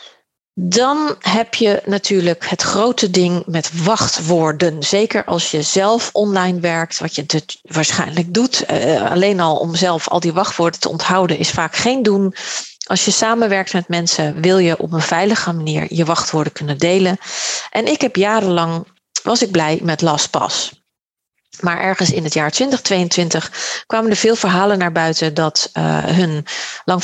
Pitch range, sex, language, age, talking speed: 165-215 Hz, female, Dutch, 40-59, 160 wpm